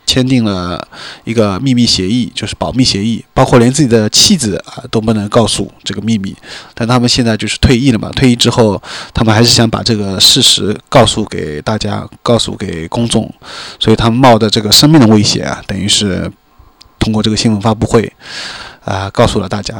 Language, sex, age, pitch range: Chinese, male, 20-39, 105-125 Hz